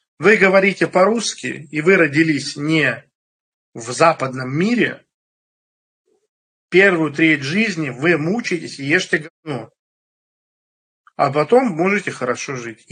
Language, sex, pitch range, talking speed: Russian, male, 135-180 Hz, 105 wpm